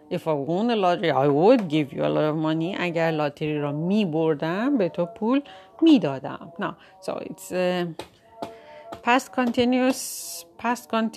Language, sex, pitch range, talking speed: Persian, female, 170-255 Hz, 170 wpm